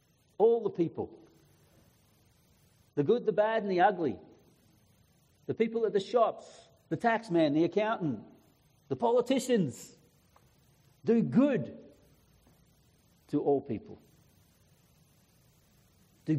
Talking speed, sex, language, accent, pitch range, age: 105 wpm, male, English, Australian, 170-235 Hz, 60-79